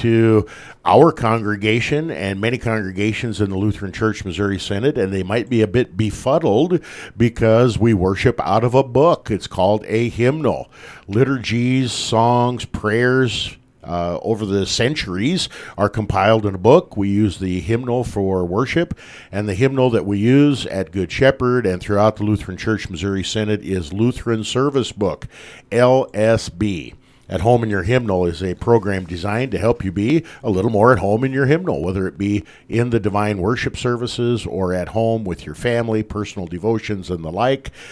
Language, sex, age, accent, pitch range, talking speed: English, male, 50-69, American, 100-120 Hz, 170 wpm